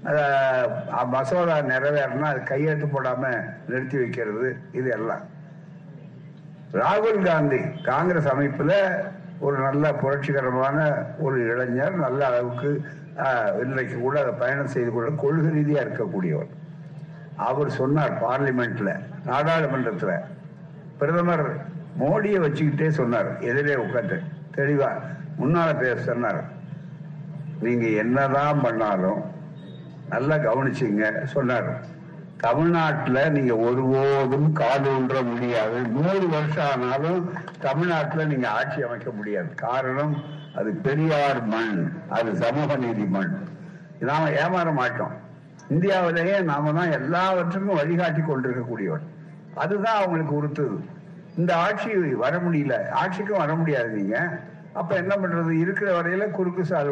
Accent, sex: native, male